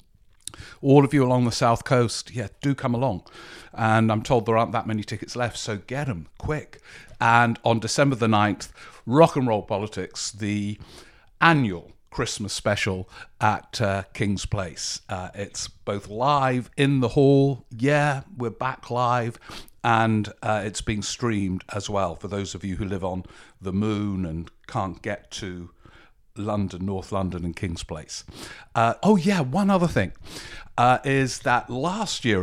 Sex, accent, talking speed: male, British, 165 wpm